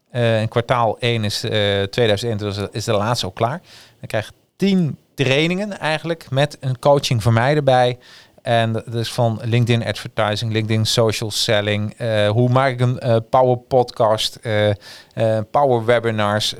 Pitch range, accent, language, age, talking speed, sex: 115-140 Hz, Dutch, Dutch, 40-59, 155 wpm, male